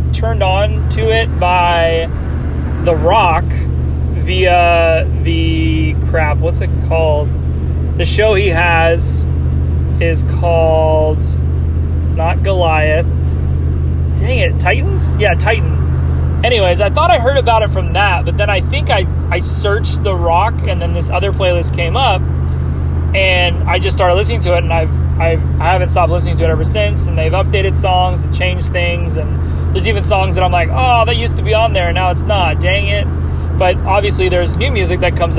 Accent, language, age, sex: American, English, 20-39, male